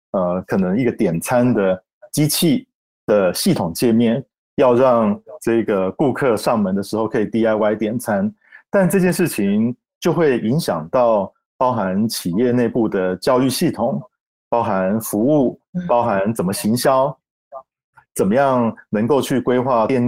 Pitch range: 105-140 Hz